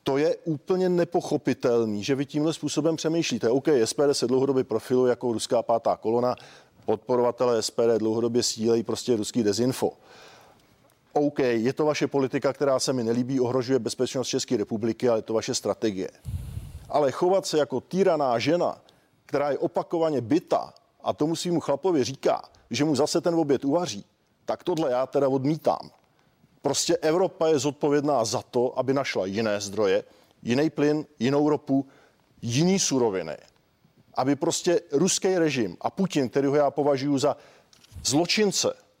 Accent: native